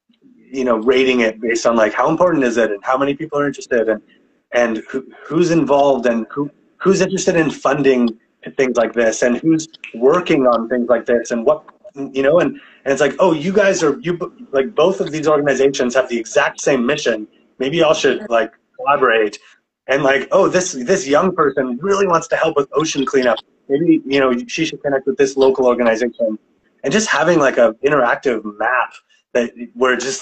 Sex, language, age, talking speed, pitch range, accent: male, English, 30-49, 200 wpm, 110-150 Hz, American